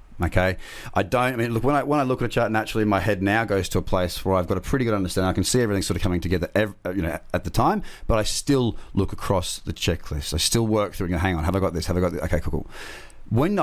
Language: English